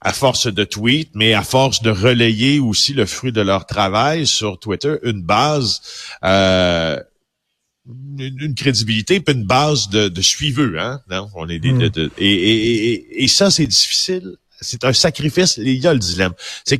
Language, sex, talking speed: French, male, 170 wpm